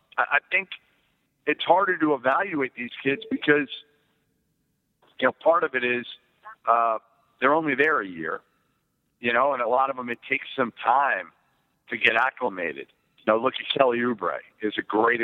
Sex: male